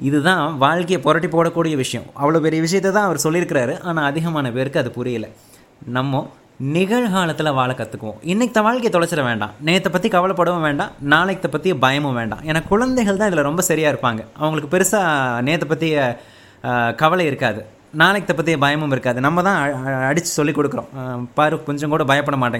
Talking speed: 160 wpm